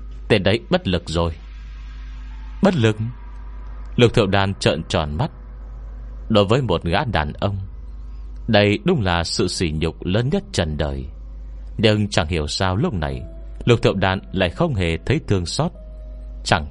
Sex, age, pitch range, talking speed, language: male, 30-49, 65-110 Hz, 160 wpm, Vietnamese